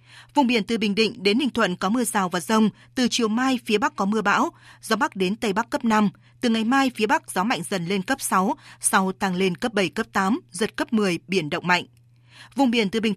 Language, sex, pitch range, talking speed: Vietnamese, female, 190-235 Hz, 255 wpm